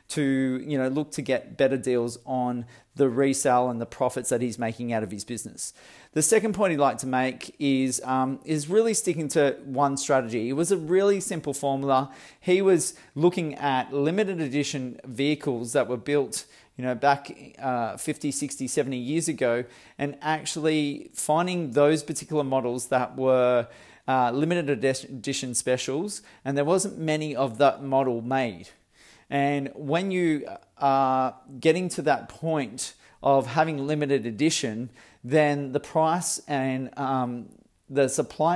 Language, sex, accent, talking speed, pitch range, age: English, male, Australian, 155 wpm, 130-155 Hz, 30-49